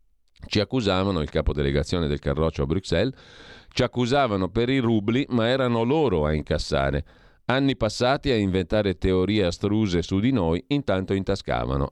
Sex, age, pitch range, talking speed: male, 40-59, 80-110 Hz, 145 wpm